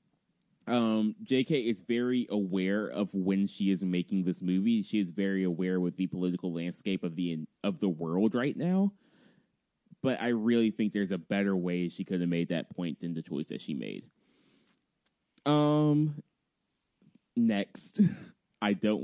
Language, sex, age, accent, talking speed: English, male, 20-39, American, 160 wpm